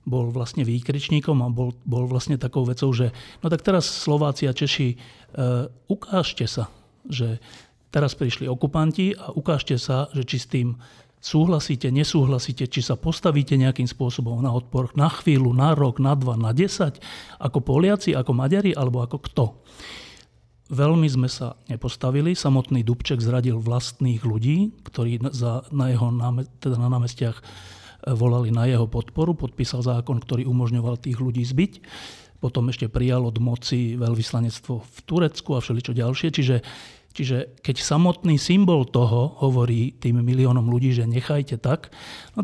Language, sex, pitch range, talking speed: Slovak, male, 120-145 Hz, 150 wpm